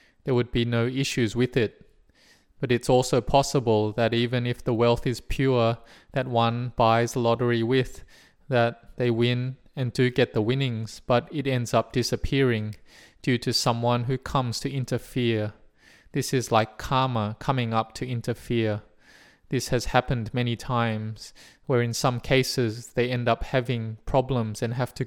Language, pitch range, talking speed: English, 115-130 Hz, 165 wpm